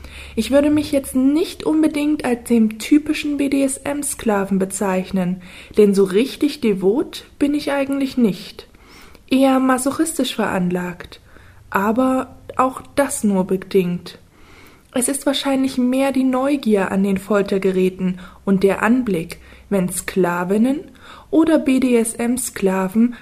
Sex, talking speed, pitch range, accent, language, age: female, 110 wpm, 195-255 Hz, German, German, 20-39